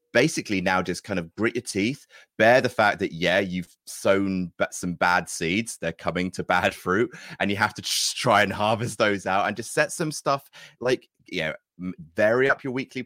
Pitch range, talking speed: 90-115 Hz, 210 wpm